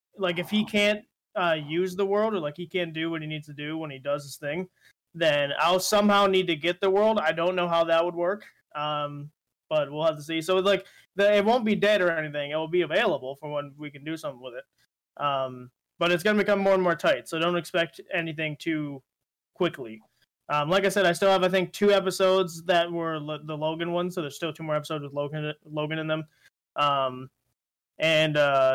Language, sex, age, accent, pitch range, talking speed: English, male, 20-39, American, 150-190 Hz, 235 wpm